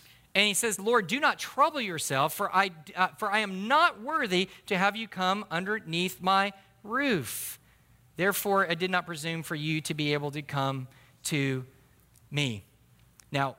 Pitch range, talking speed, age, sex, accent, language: 130-170 Hz, 160 wpm, 40-59, male, American, English